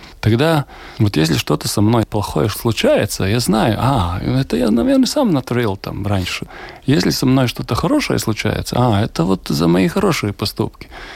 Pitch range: 105-130 Hz